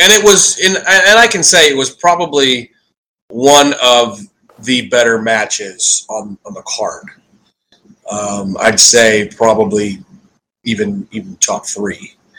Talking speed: 135 wpm